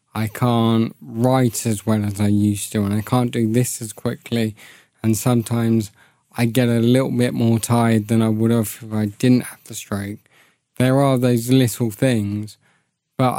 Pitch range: 110-125 Hz